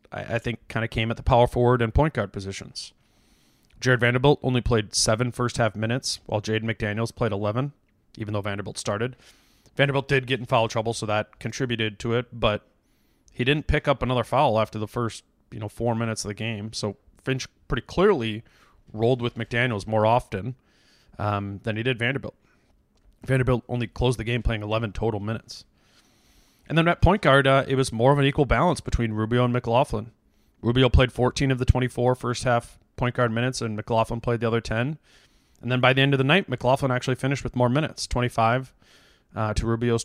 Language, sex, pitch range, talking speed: English, male, 105-125 Hz, 200 wpm